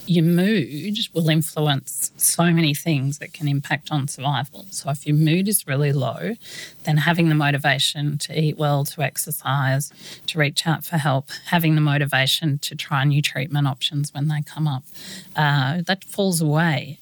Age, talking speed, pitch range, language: 40-59, 175 wpm, 145-165 Hz, English